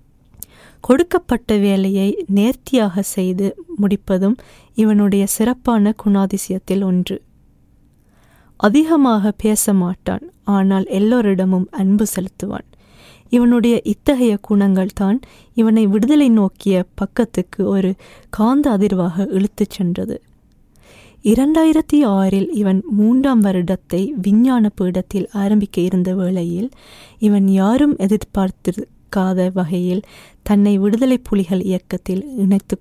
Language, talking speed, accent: Tamil, 90 wpm, native